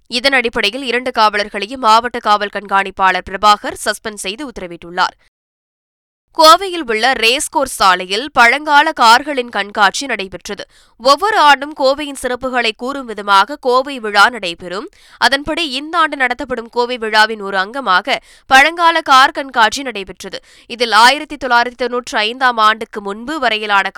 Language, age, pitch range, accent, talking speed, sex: Tamil, 20-39, 200-265 Hz, native, 115 wpm, female